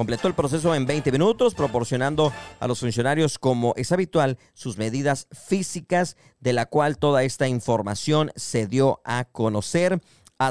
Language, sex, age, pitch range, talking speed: Spanish, male, 40-59, 115-150 Hz, 155 wpm